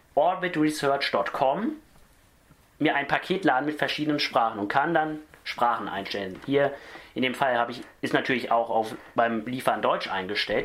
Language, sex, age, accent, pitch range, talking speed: German, male, 30-49, German, 125-165 Hz, 145 wpm